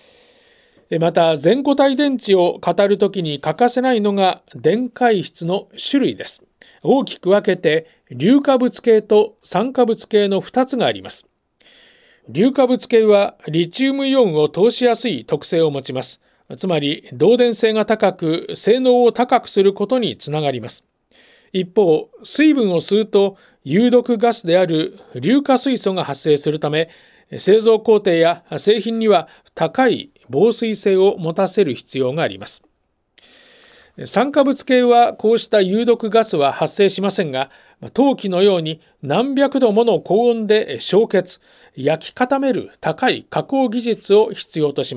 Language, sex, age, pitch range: Japanese, male, 40-59, 170-240 Hz